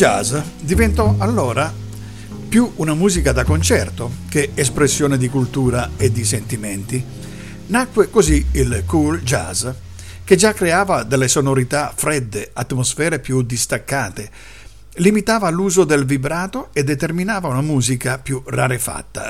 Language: Italian